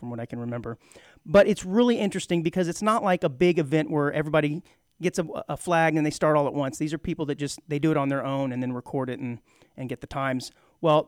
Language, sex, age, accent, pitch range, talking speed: English, male, 40-59, American, 135-175 Hz, 265 wpm